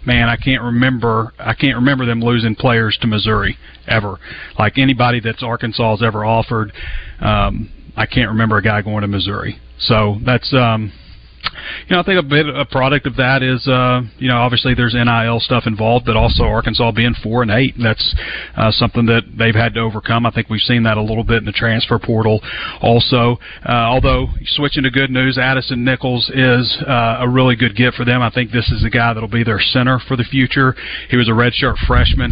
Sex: male